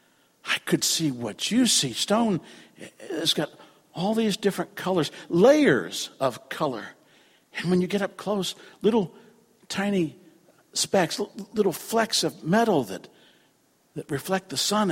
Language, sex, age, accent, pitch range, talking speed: English, male, 50-69, American, 150-210 Hz, 135 wpm